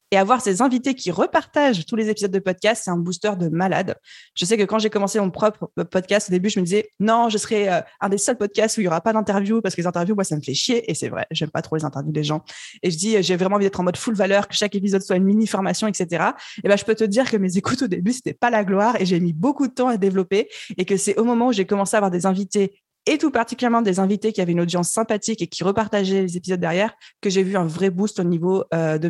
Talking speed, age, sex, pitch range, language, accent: 295 wpm, 20-39, female, 180-220 Hz, French, French